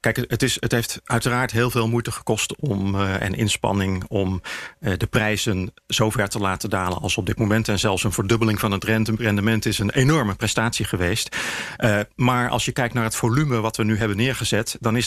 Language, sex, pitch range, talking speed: English, male, 105-125 Hz, 210 wpm